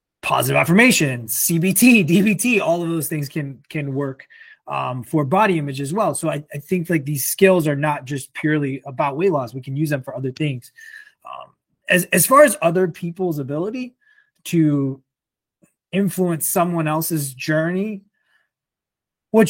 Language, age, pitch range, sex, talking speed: English, 20-39, 145-195 Hz, male, 160 wpm